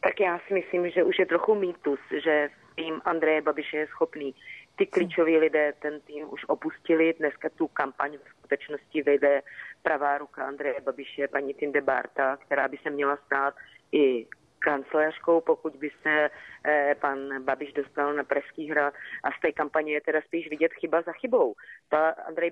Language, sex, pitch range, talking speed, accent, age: Czech, female, 145-165 Hz, 175 wpm, native, 30-49